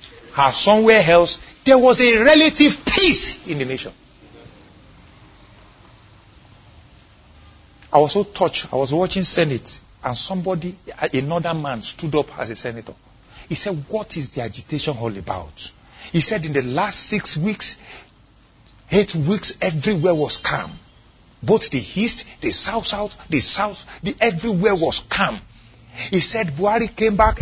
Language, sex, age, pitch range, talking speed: English, male, 50-69, 130-195 Hz, 140 wpm